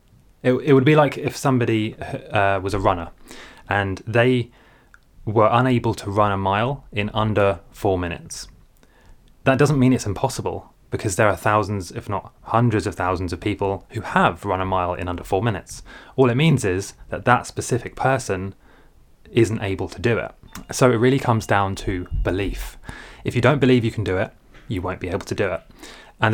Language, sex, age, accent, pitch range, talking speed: English, male, 20-39, British, 105-130 Hz, 190 wpm